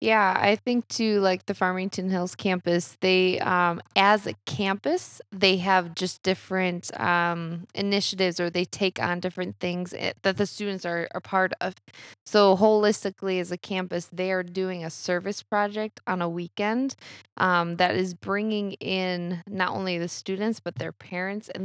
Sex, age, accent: female, 20-39, American